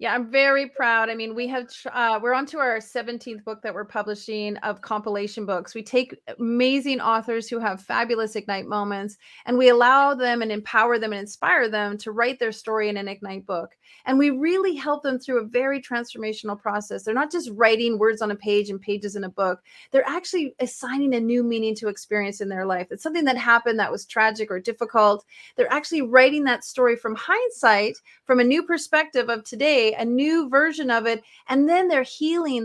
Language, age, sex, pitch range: English, 30-49, female, 210-255 Hz